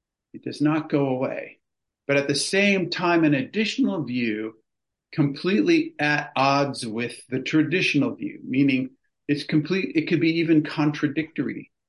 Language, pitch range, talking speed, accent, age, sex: English, 140-165 Hz, 140 wpm, American, 50-69, male